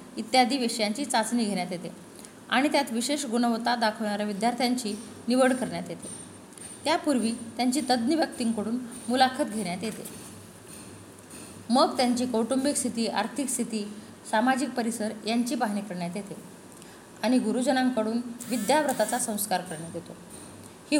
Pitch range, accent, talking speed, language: 220-260 Hz, native, 90 wpm, Hindi